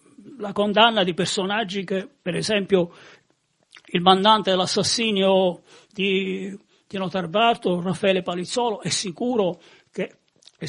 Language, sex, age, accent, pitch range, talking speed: Italian, male, 40-59, native, 195-240 Hz, 105 wpm